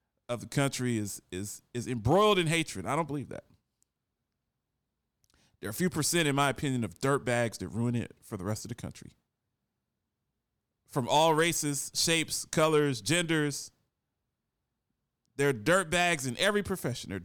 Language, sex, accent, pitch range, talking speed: English, male, American, 120-175 Hz, 165 wpm